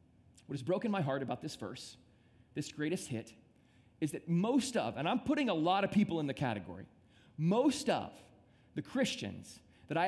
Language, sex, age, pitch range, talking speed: English, male, 30-49, 125-180 Hz, 185 wpm